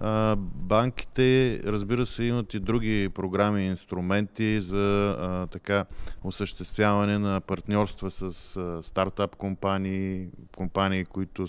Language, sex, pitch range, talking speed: Bulgarian, male, 90-110 Hz, 105 wpm